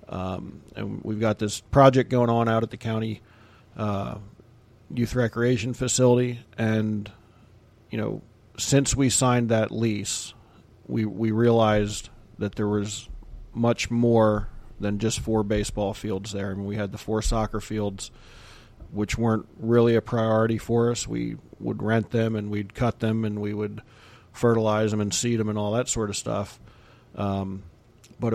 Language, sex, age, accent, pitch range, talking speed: English, male, 40-59, American, 105-115 Hz, 165 wpm